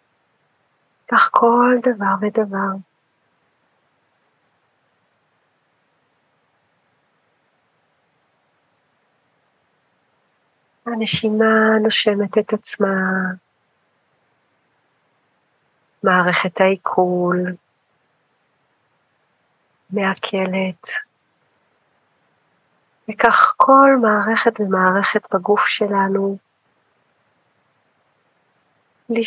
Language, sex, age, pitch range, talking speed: Hebrew, female, 40-59, 195-225 Hz, 35 wpm